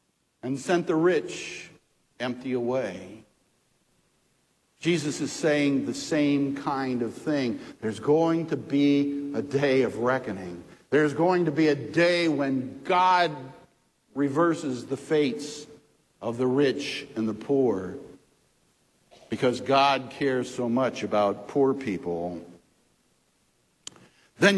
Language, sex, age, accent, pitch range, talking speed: English, male, 60-79, American, 130-175 Hz, 115 wpm